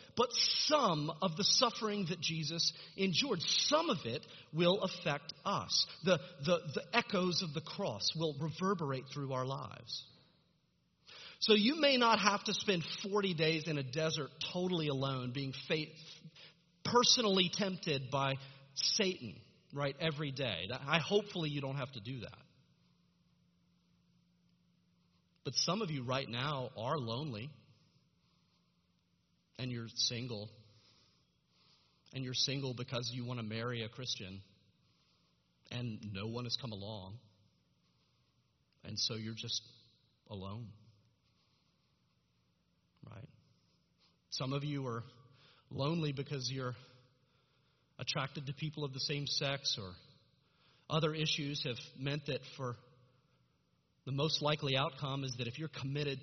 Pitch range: 125-165 Hz